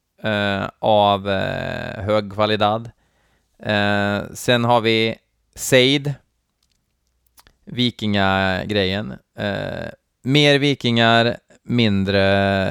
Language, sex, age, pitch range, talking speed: Swedish, male, 20-39, 100-125 Hz, 70 wpm